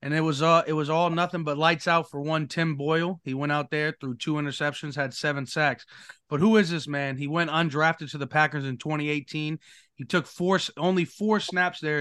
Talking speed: 215 wpm